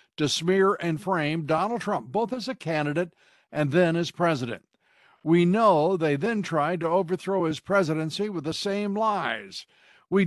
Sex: male